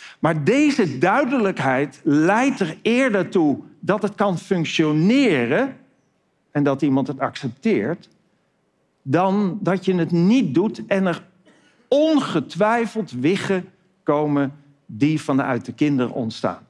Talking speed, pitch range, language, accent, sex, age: 115 wpm, 130-195 Hz, Dutch, Dutch, male, 50-69